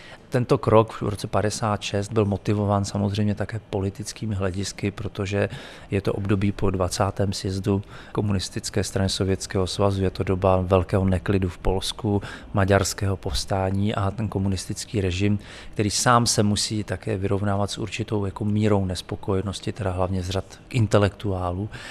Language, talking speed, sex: Czech, 135 wpm, male